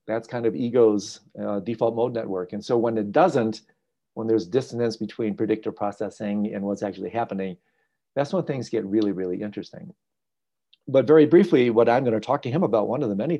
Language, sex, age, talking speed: English, male, 50-69, 195 wpm